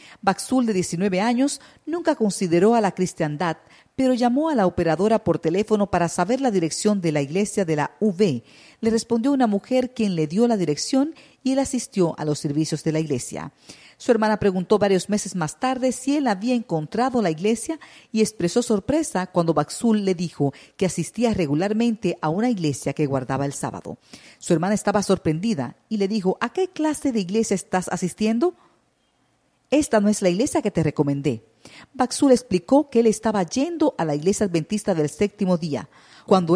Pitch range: 165-230 Hz